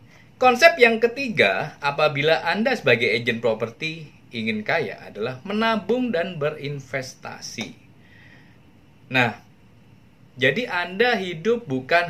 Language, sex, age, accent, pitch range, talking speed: Indonesian, male, 20-39, native, 125-180 Hz, 95 wpm